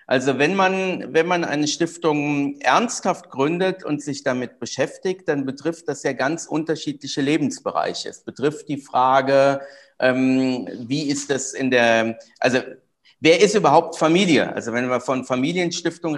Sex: male